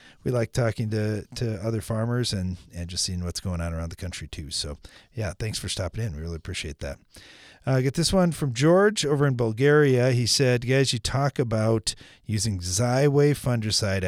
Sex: male